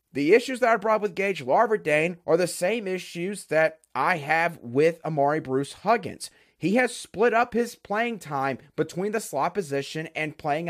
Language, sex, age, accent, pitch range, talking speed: English, male, 30-49, American, 165-235 Hz, 180 wpm